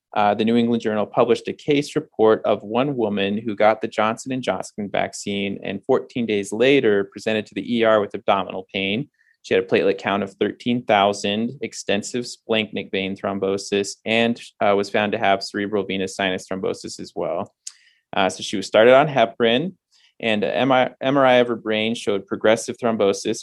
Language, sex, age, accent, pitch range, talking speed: English, male, 20-39, American, 100-120 Hz, 175 wpm